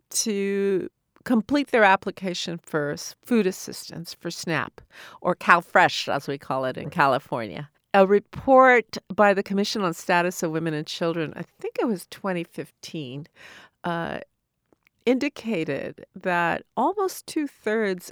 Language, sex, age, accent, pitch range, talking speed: English, female, 50-69, American, 175-235 Hz, 125 wpm